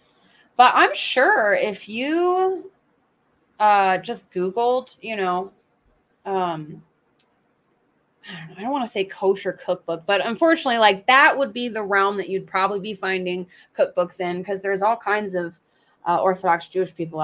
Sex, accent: female, American